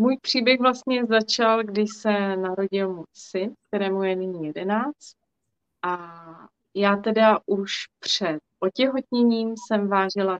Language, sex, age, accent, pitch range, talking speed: Czech, female, 30-49, native, 185-220 Hz, 120 wpm